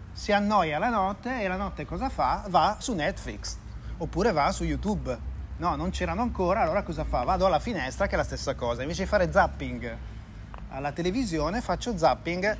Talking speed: 185 wpm